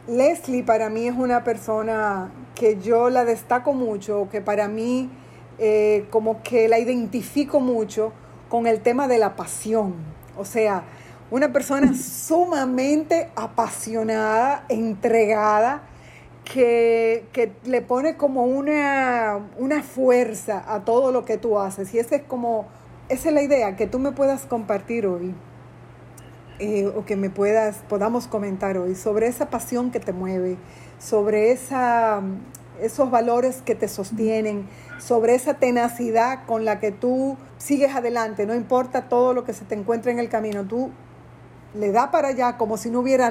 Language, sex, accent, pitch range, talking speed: Spanish, female, American, 215-255 Hz, 150 wpm